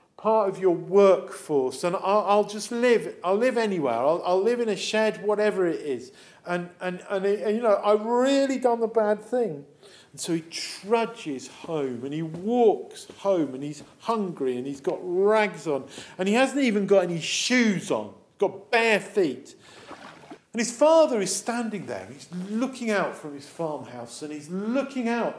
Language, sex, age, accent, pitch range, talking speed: English, male, 50-69, British, 180-240 Hz, 185 wpm